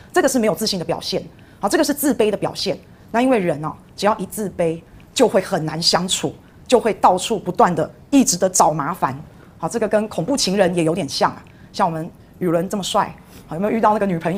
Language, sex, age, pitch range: Chinese, female, 30-49, 185-245 Hz